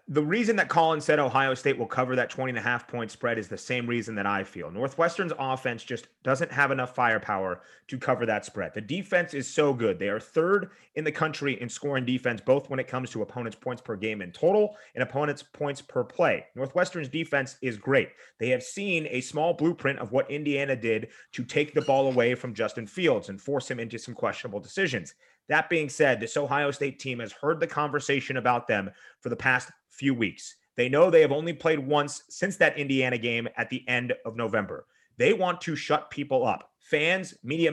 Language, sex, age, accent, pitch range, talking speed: English, male, 30-49, American, 125-150 Hz, 215 wpm